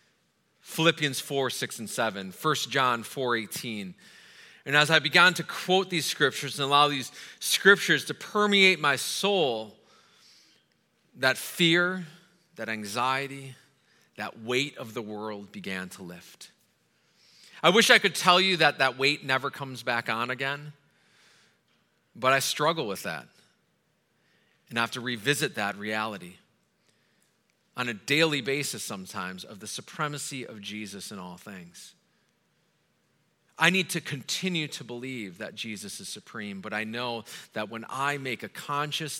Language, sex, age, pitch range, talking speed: English, male, 40-59, 110-165 Hz, 145 wpm